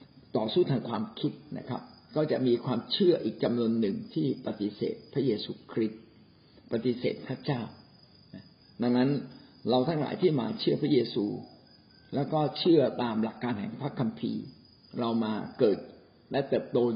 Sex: male